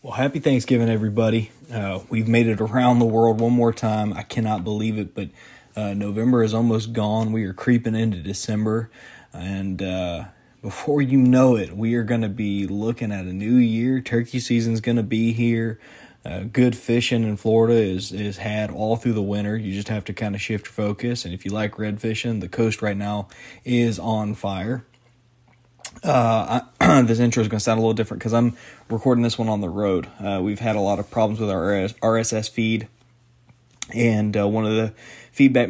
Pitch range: 105-120 Hz